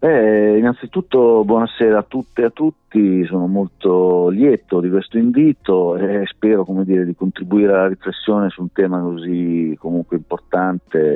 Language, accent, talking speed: Italian, native, 150 wpm